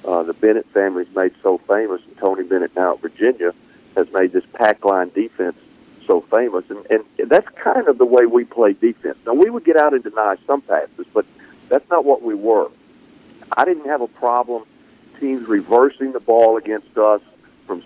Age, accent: 50-69, American